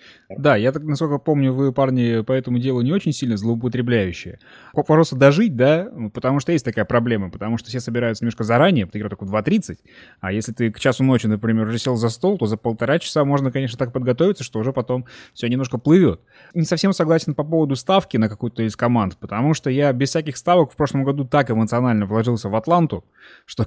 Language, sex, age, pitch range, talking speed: Russian, male, 20-39, 110-140 Hz, 210 wpm